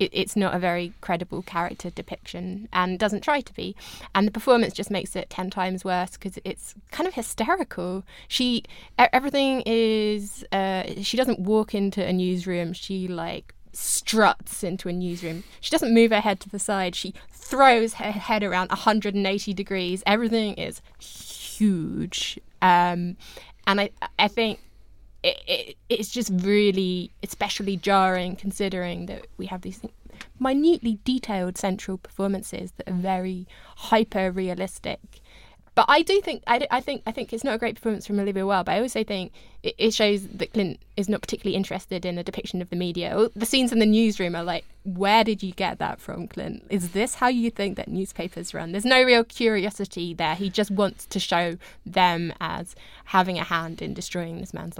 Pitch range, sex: 185-220 Hz, female